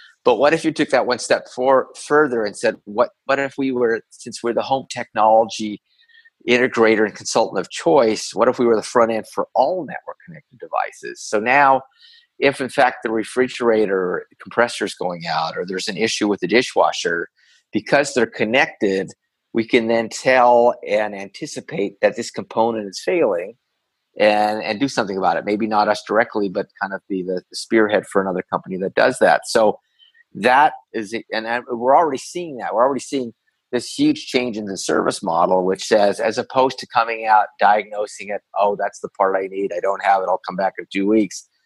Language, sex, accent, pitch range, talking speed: English, male, American, 100-135 Hz, 195 wpm